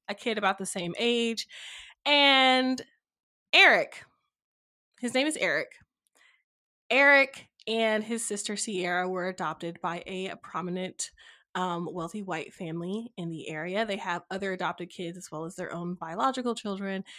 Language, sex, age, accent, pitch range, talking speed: English, female, 20-39, American, 185-255 Hz, 145 wpm